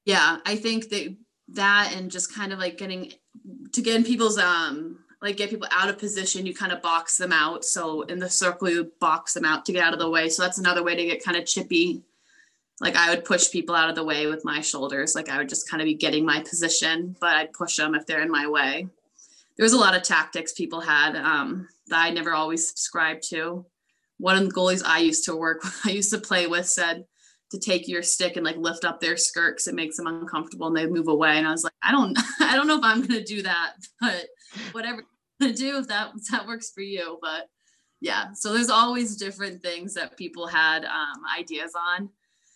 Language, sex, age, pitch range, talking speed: English, female, 20-39, 160-205 Hz, 235 wpm